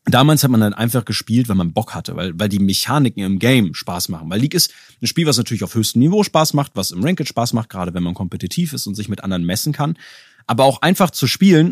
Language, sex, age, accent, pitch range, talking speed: German, male, 30-49, German, 105-145 Hz, 260 wpm